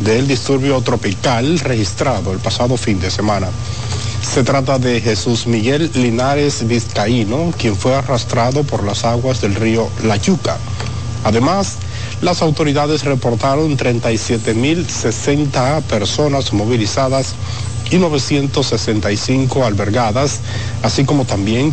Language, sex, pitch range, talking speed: Spanish, male, 110-135 Hz, 110 wpm